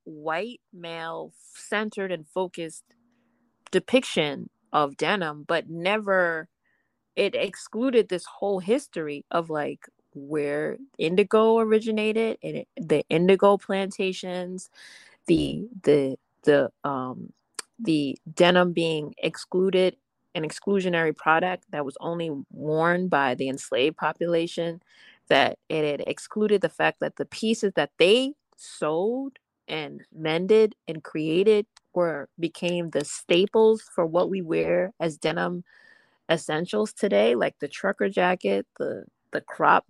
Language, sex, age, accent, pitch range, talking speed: English, female, 30-49, American, 160-210 Hz, 115 wpm